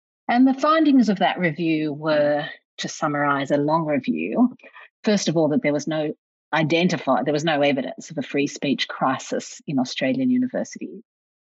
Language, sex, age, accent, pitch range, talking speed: English, female, 40-59, Australian, 155-230 Hz, 165 wpm